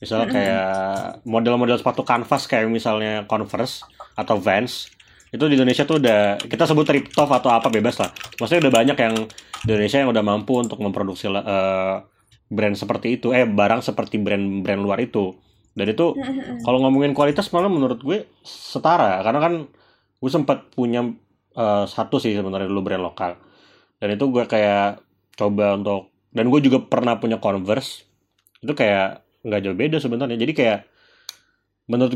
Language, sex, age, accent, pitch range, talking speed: Indonesian, male, 30-49, native, 100-125 Hz, 160 wpm